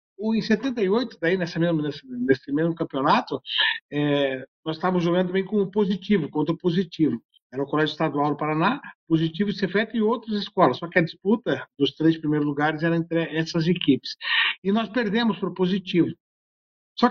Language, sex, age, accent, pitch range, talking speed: Portuguese, male, 50-69, Brazilian, 155-200 Hz, 175 wpm